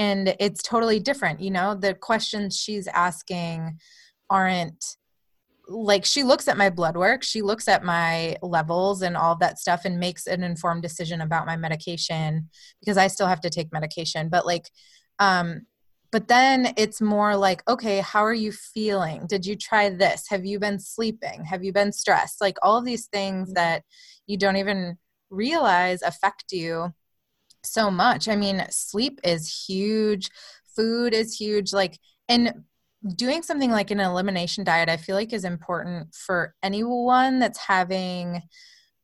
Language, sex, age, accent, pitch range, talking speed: English, female, 20-39, American, 175-215 Hz, 165 wpm